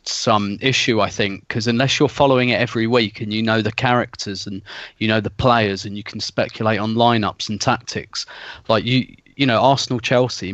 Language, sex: English, male